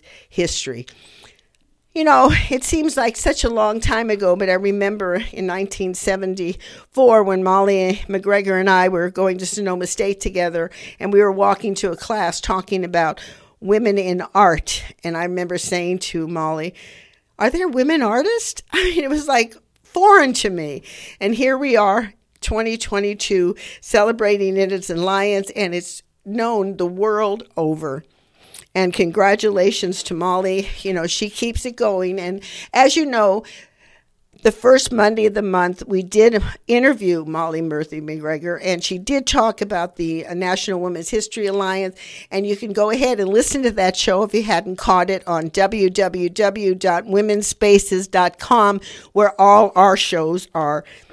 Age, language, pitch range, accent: 50-69, English, 180-215 Hz, American